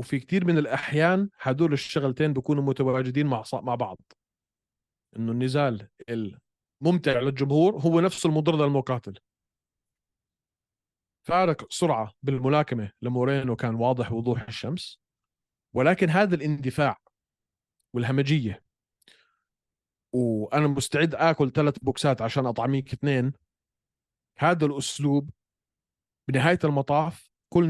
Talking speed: 95 wpm